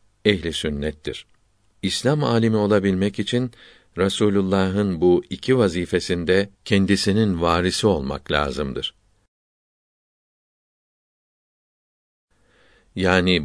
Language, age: Turkish, 50-69